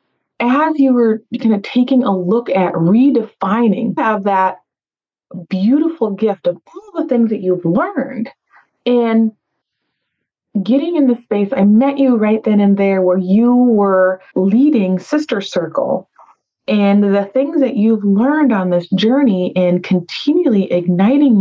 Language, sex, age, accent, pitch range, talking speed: English, female, 30-49, American, 180-245 Hz, 140 wpm